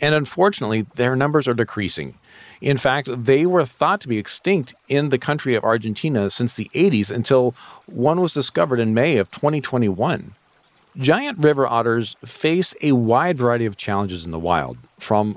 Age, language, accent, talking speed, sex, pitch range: 40-59, English, American, 170 wpm, male, 110-145 Hz